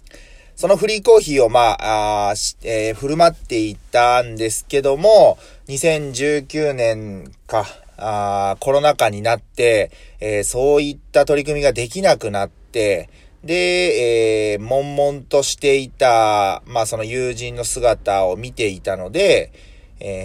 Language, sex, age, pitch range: Japanese, male, 30-49, 105-150 Hz